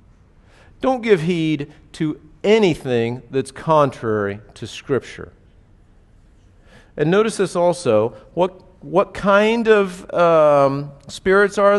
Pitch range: 100-160 Hz